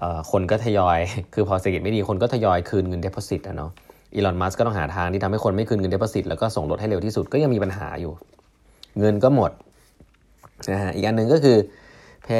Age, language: 20-39, Thai